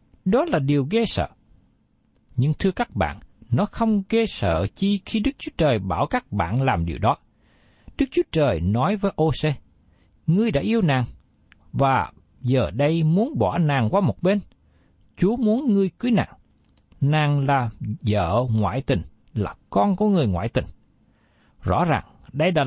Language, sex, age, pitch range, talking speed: Vietnamese, male, 60-79, 110-185 Hz, 165 wpm